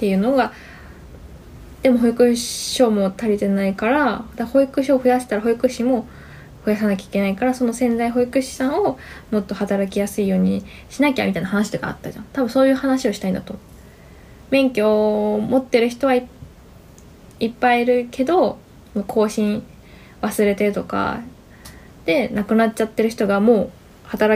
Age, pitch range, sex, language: 20-39, 195-255 Hz, female, Japanese